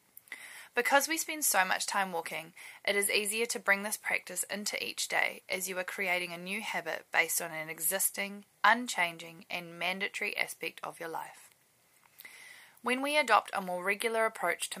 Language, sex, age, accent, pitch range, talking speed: English, female, 10-29, Australian, 170-230 Hz, 175 wpm